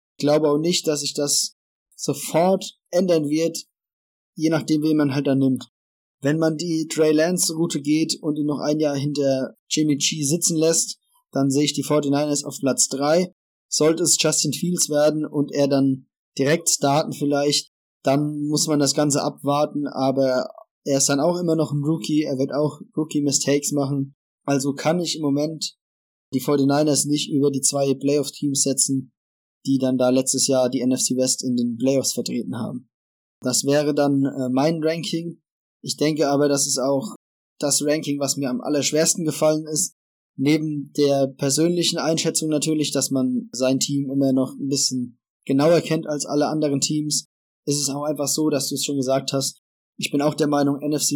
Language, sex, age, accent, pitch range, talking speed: German, male, 20-39, German, 135-155 Hz, 180 wpm